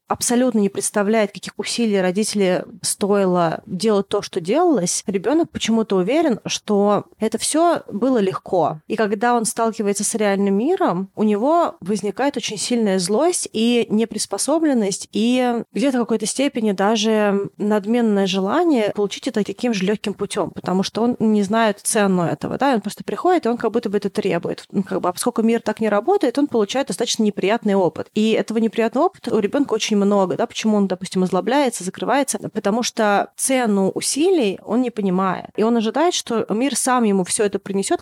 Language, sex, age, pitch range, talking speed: Russian, female, 30-49, 195-235 Hz, 175 wpm